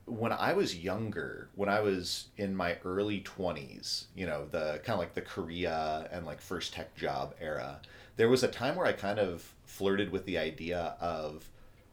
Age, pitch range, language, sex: 30-49, 85-100 Hz, English, male